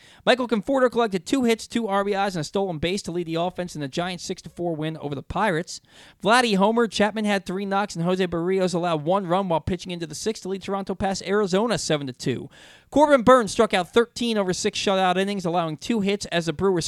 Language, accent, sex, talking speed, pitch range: English, American, male, 215 wpm, 155-200 Hz